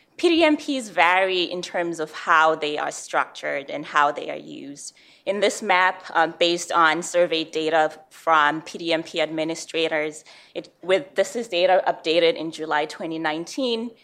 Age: 20-39